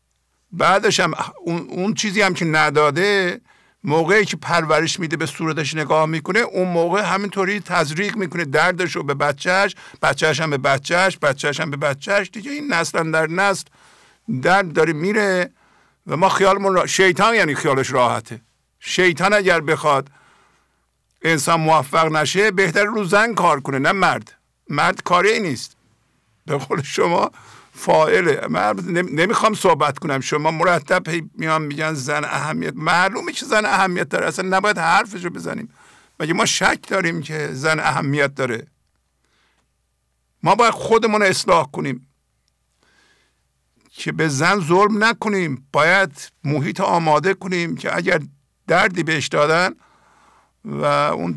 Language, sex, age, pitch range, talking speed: English, male, 50-69, 145-190 Hz, 135 wpm